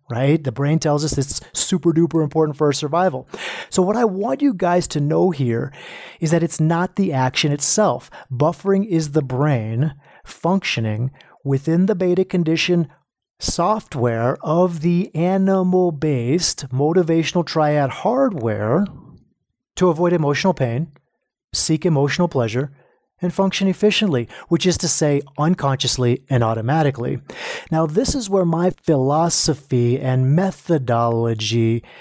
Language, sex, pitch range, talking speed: English, male, 130-175 Hz, 130 wpm